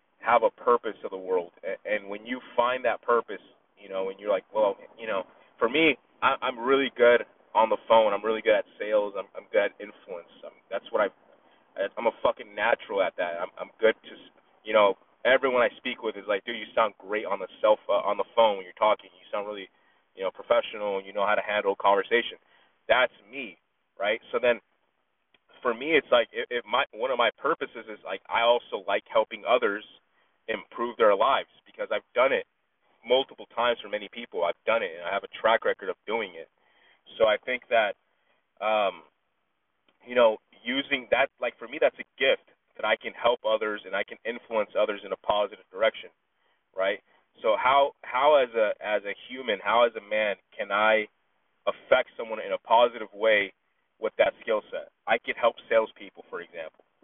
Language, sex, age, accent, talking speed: English, male, 20-39, American, 205 wpm